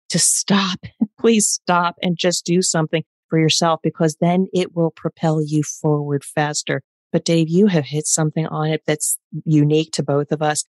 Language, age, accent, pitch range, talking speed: English, 40-59, American, 155-190 Hz, 180 wpm